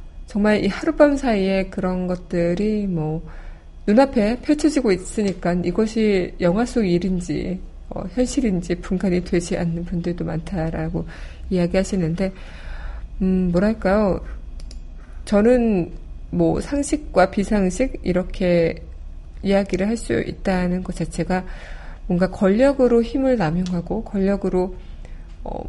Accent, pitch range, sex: native, 175-225 Hz, female